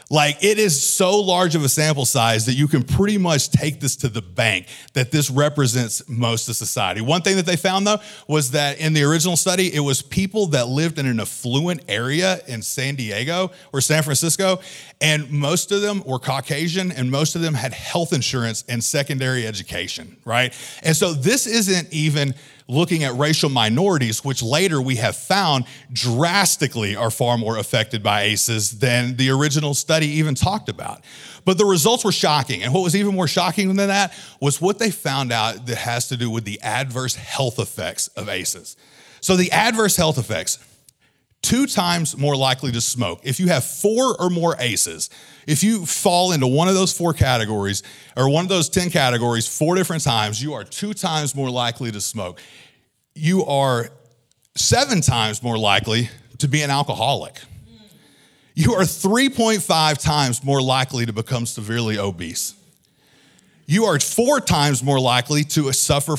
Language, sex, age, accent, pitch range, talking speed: English, male, 40-59, American, 120-175 Hz, 180 wpm